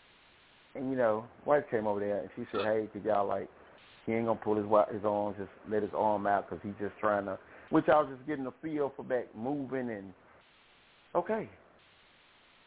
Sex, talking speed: male, 210 wpm